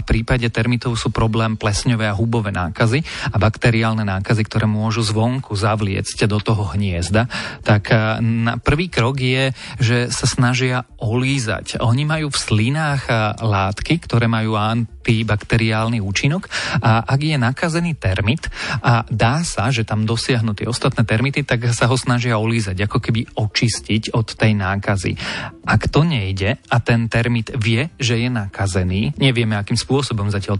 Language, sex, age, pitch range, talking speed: Slovak, male, 40-59, 110-125 Hz, 155 wpm